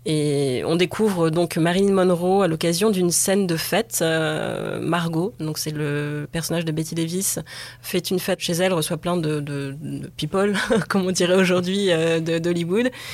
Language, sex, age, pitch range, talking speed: French, female, 20-39, 165-195 Hz, 185 wpm